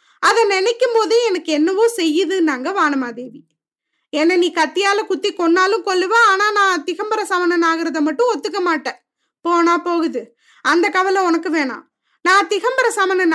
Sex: female